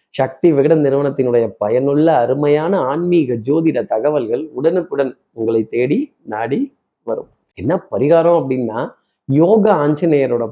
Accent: native